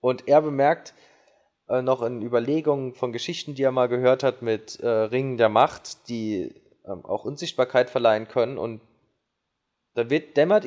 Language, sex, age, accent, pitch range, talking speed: German, male, 20-39, German, 120-145 Hz, 155 wpm